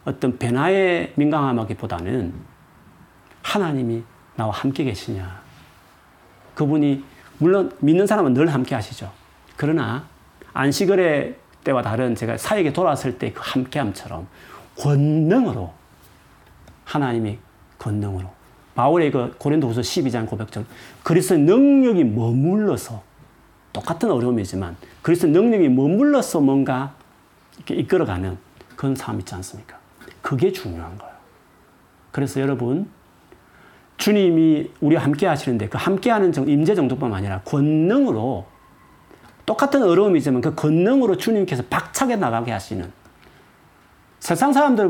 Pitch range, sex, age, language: 110-165 Hz, male, 40-59, Korean